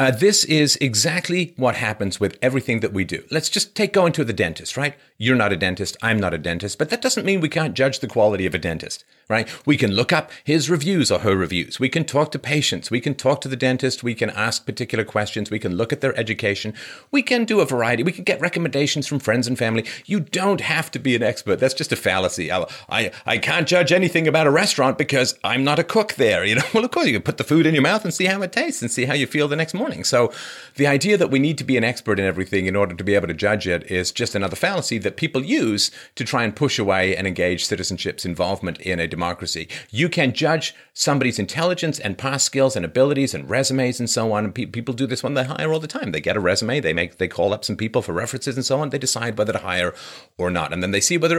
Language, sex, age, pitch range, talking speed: English, male, 40-59, 100-155 Hz, 265 wpm